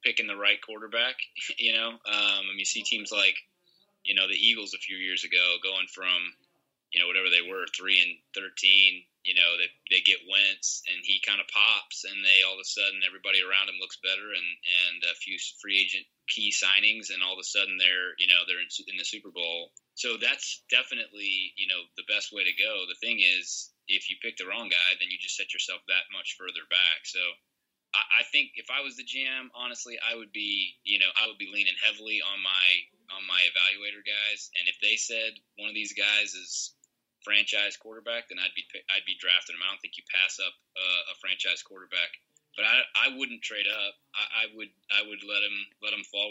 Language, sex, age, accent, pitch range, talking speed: English, male, 20-39, American, 95-115 Hz, 225 wpm